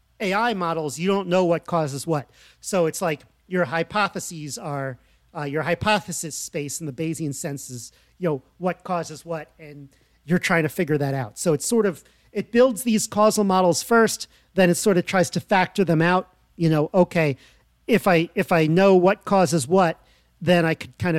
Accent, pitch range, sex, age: American, 140-185 Hz, male, 40-59